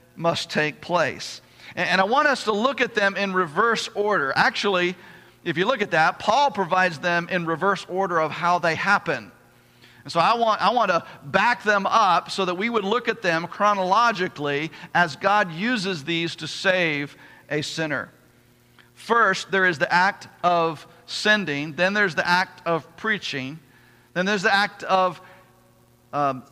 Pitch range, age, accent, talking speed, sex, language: 155-205 Hz, 50-69, American, 165 wpm, male, English